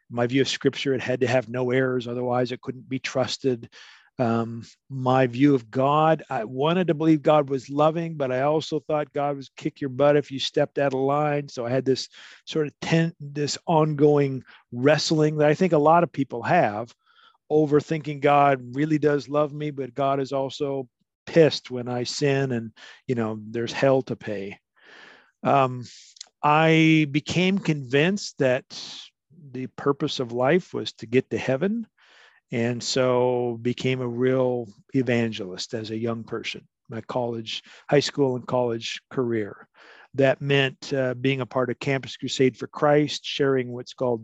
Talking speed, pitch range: 170 wpm, 125-150 Hz